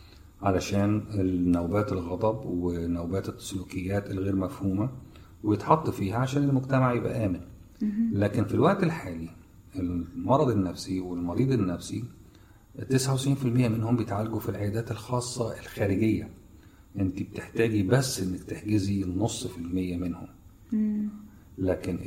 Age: 50-69